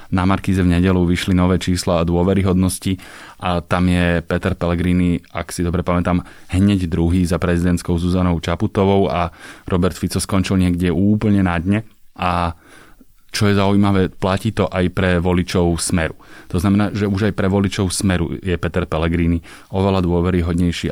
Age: 20-39